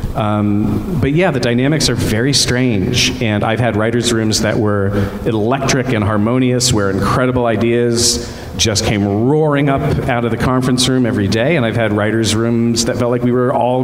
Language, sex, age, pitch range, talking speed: English, male, 40-59, 105-125 Hz, 195 wpm